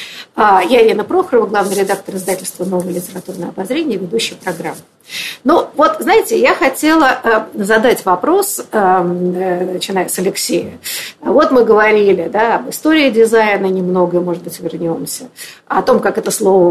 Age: 50-69